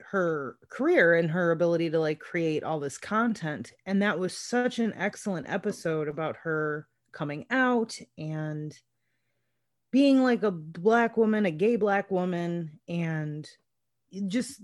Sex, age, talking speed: female, 30-49, 140 wpm